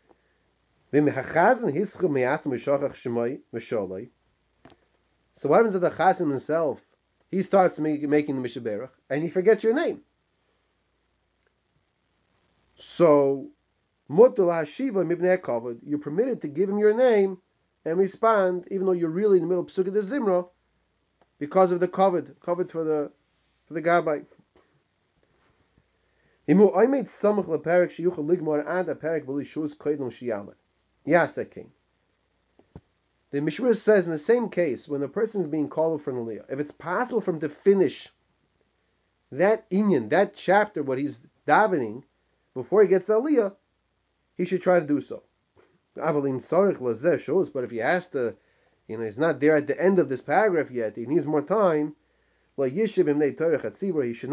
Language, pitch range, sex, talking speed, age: English, 140-190 Hz, male, 135 wpm, 30-49